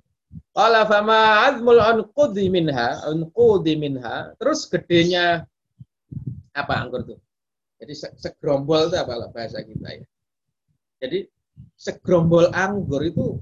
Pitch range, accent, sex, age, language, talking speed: 130-170 Hz, native, male, 30-49, Indonesian, 105 wpm